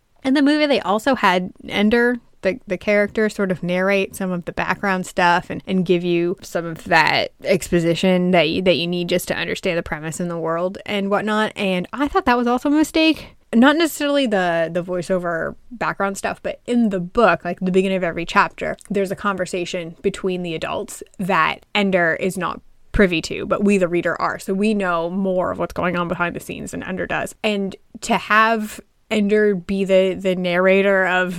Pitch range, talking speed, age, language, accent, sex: 180-210 Hz, 205 wpm, 10-29, English, American, female